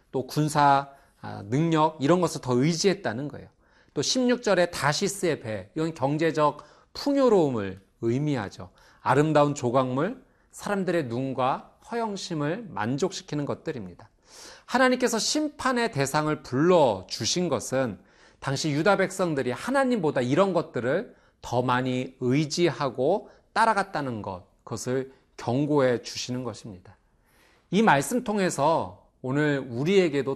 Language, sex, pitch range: Korean, male, 120-175 Hz